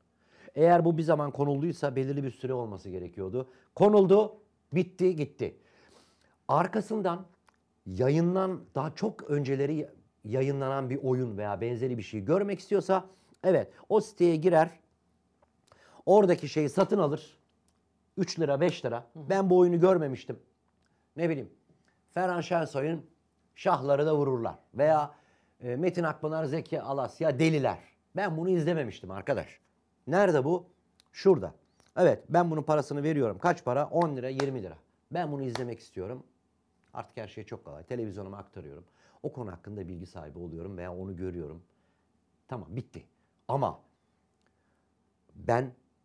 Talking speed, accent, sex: 130 wpm, native, male